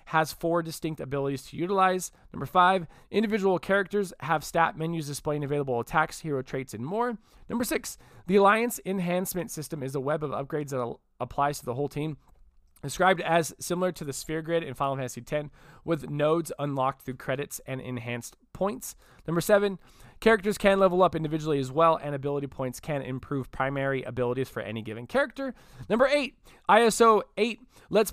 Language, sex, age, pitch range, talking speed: English, male, 20-39, 135-185 Hz, 175 wpm